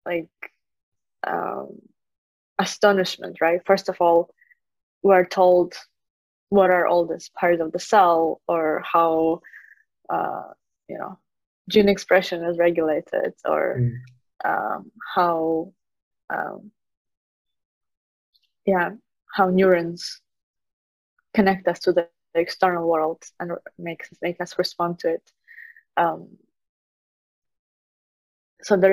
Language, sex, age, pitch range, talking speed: English, female, 20-39, 175-210 Hz, 105 wpm